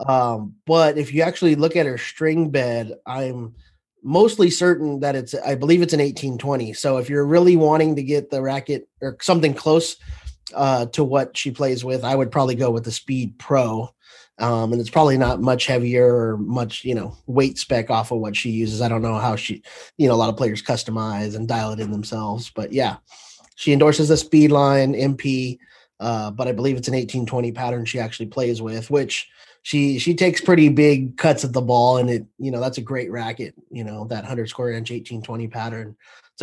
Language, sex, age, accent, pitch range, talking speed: English, male, 30-49, American, 115-145 Hz, 210 wpm